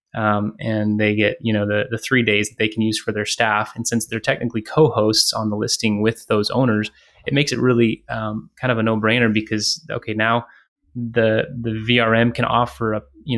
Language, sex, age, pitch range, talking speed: English, male, 20-39, 110-125 Hz, 215 wpm